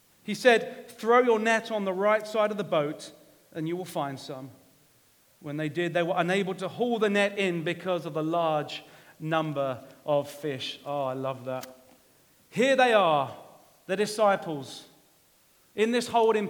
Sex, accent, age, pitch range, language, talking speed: male, British, 30-49, 165-230 Hz, English, 170 wpm